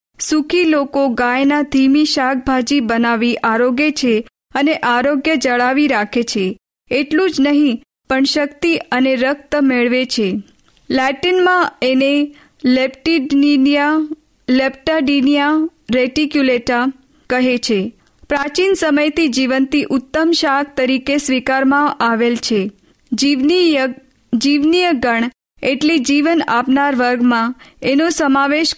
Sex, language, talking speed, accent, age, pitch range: female, Hindi, 60 wpm, native, 20-39, 250-300 Hz